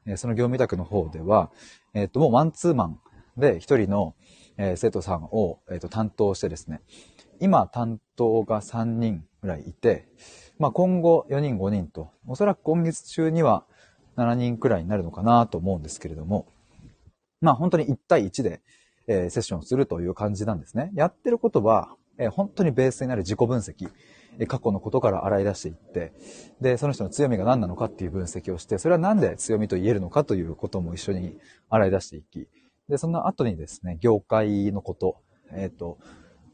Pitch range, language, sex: 95-130 Hz, Japanese, male